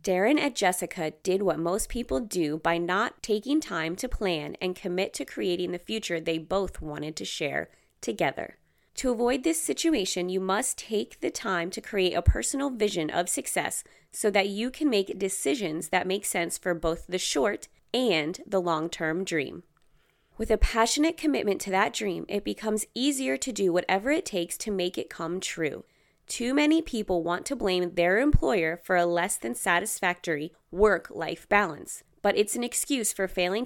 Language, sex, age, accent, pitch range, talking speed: English, female, 20-39, American, 175-220 Hz, 180 wpm